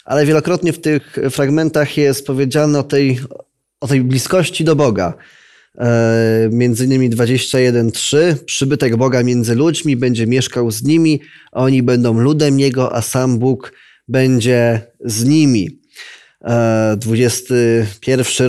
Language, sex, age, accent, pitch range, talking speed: Polish, male, 20-39, native, 120-145 Hz, 115 wpm